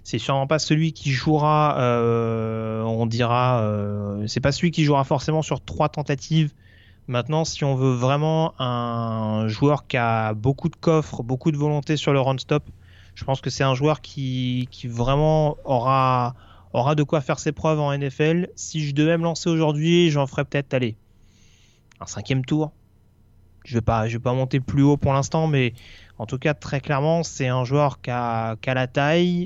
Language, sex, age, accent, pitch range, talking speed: French, male, 30-49, French, 120-155 Hz, 190 wpm